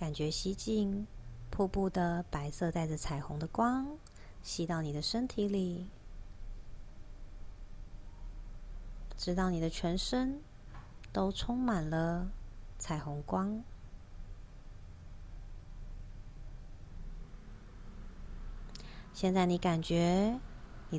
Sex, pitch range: female, 120-200 Hz